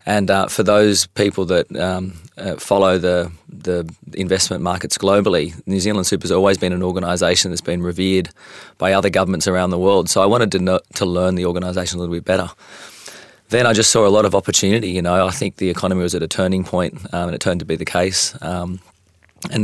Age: 30-49